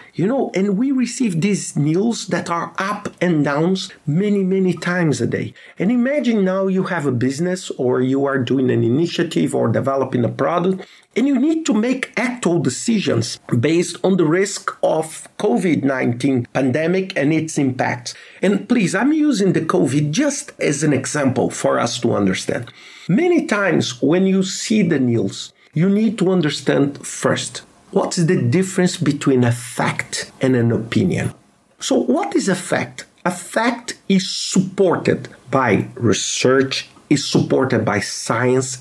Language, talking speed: English, 160 wpm